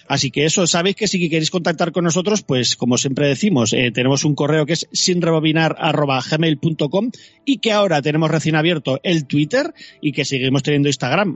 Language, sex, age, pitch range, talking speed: Spanish, male, 30-49, 135-175 Hz, 180 wpm